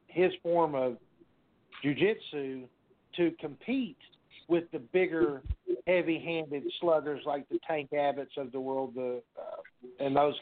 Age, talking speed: 50-69, 130 wpm